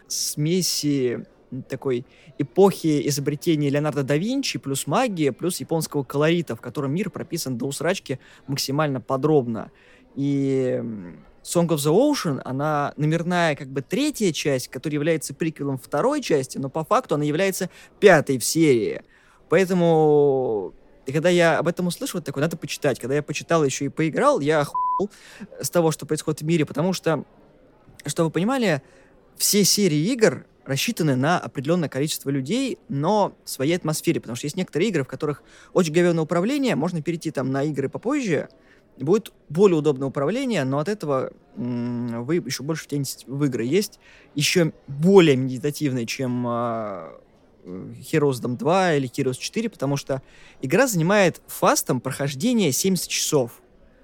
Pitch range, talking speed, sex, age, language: 135-175 Hz, 150 wpm, male, 20-39, Russian